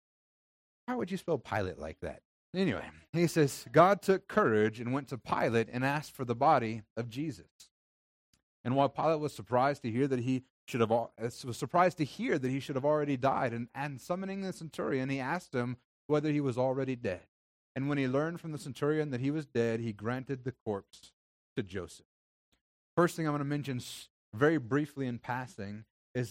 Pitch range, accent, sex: 115-145 Hz, American, male